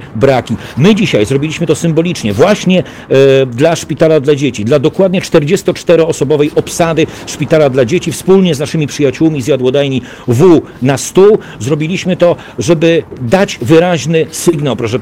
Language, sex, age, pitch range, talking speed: Polish, male, 40-59, 120-160 Hz, 135 wpm